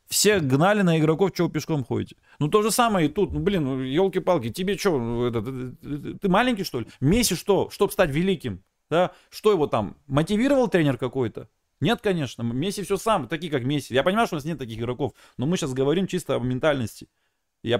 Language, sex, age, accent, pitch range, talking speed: Russian, male, 30-49, native, 130-200 Hz, 195 wpm